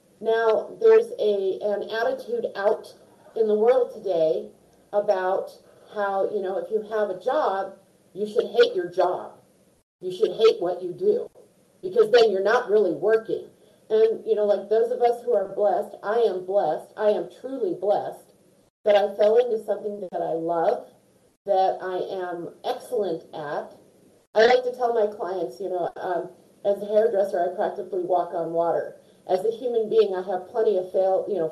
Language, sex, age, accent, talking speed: English, female, 40-59, American, 180 wpm